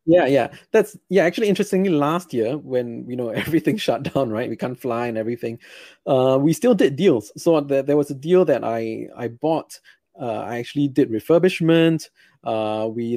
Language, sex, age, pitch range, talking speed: English, male, 20-39, 125-160 Hz, 190 wpm